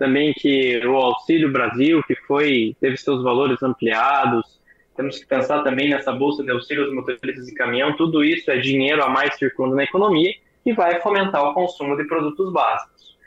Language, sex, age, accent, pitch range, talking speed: Portuguese, male, 20-39, Brazilian, 135-180 Hz, 175 wpm